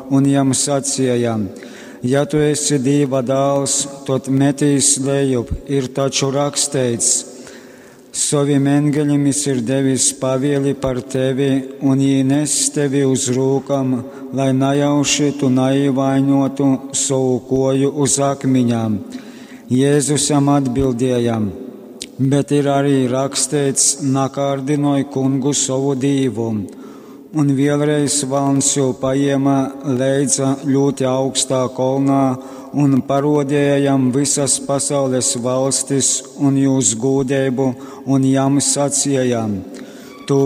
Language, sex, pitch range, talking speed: English, male, 130-140 Hz, 95 wpm